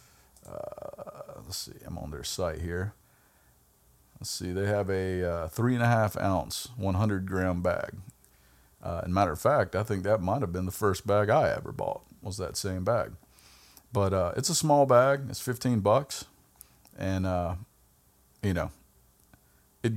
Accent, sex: American, male